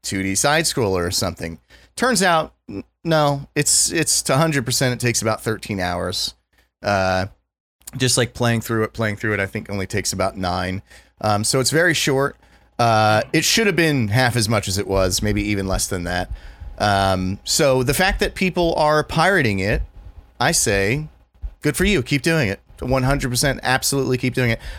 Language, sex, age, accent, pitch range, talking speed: English, male, 30-49, American, 100-135 Hz, 180 wpm